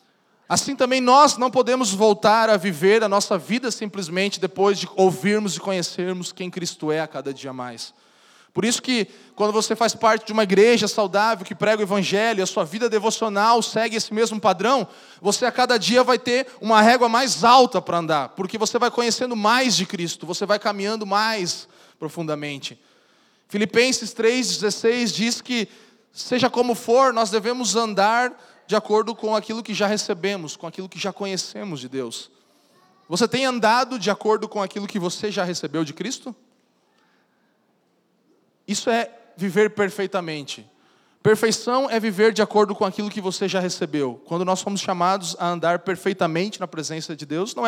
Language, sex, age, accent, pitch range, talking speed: Portuguese, male, 20-39, Brazilian, 180-225 Hz, 170 wpm